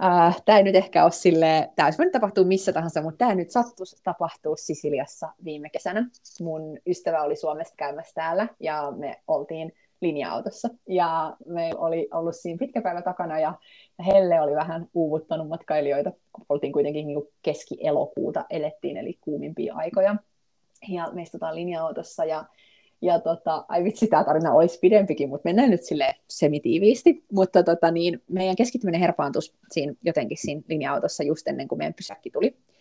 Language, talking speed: Finnish, 155 wpm